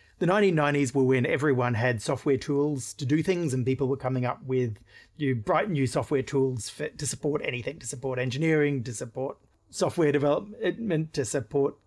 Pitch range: 125-160 Hz